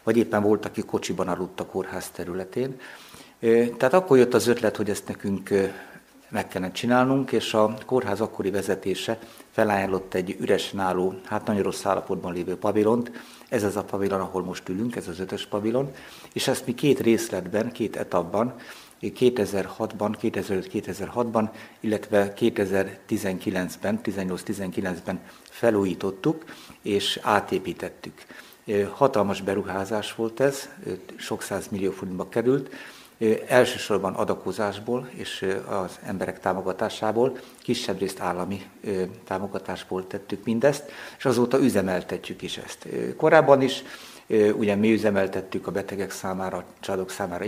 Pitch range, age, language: 95-120 Hz, 60-79, Hungarian